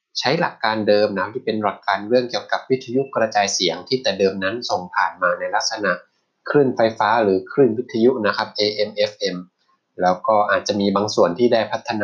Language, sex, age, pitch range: Thai, male, 20-39, 100-120 Hz